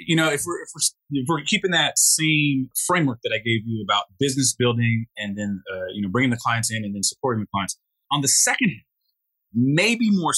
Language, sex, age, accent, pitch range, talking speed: English, male, 30-49, American, 110-140 Hz, 225 wpm